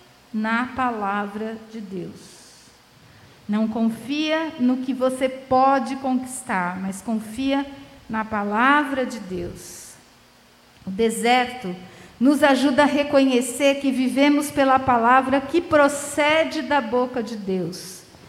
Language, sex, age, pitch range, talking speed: Portuguese, female, 50-69, 235-290 Hz, 110 wpm